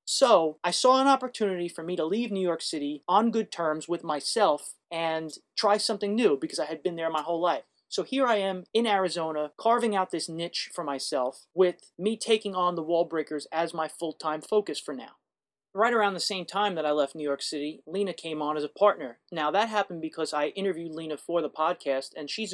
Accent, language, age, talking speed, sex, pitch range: American, English, 30-49, 220 wpm, male, 155-195 Hz